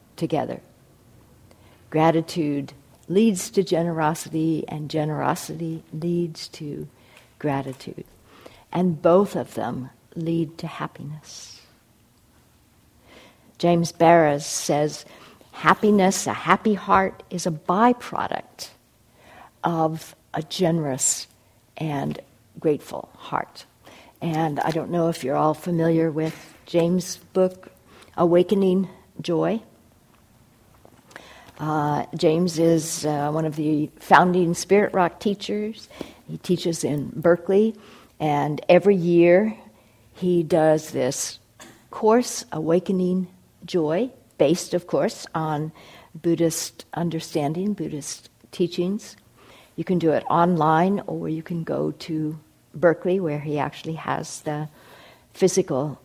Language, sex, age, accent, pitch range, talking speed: English, female, 60-79, American, 145-180 Hz, 100 wpm